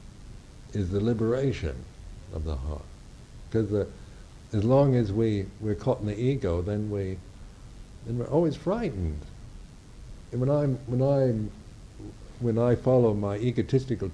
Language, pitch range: English, 85-110 Hz